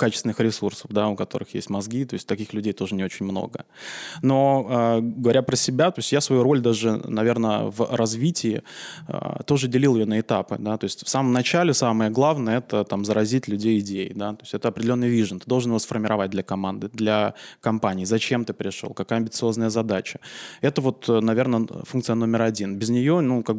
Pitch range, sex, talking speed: 105-130 Hz, male, 200 wpm